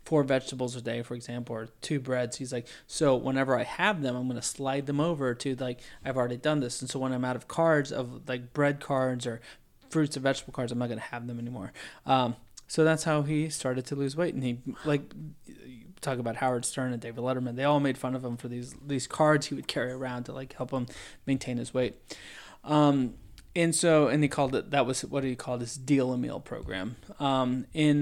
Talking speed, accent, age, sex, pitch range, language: 235 wpm, American, 20-39, male, 125-145 Hz, English